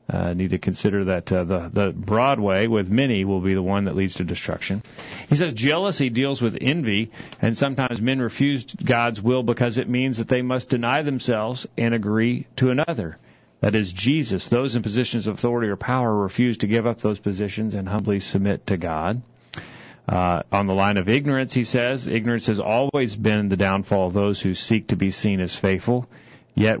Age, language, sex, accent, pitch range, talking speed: 40-59, English, male, American, 105-130 Hz, 200 wpm